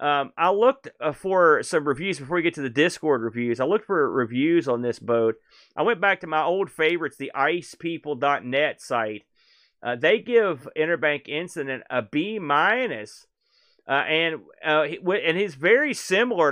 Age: 30-49